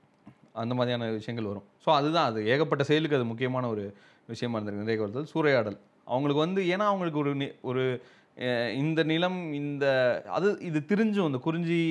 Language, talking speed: Tamil, 150 wpm